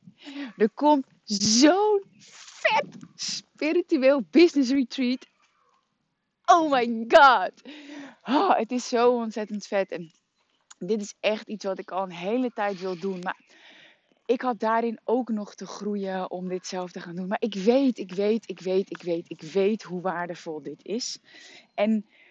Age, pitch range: 20-39, 200-255 Hz